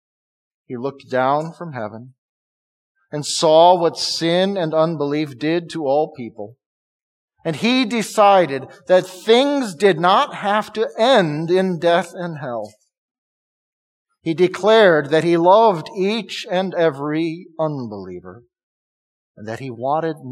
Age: 50-69